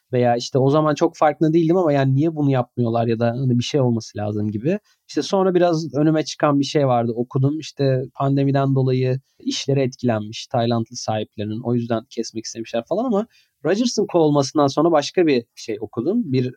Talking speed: 175 wpm